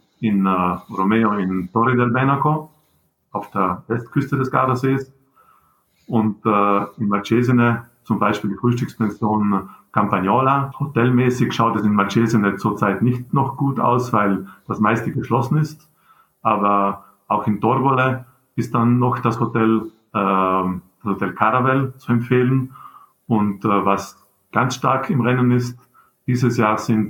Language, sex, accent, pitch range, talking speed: German, male, Austrian, 105-130 Hz, 135 wpm